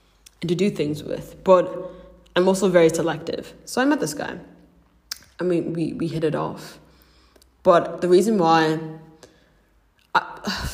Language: English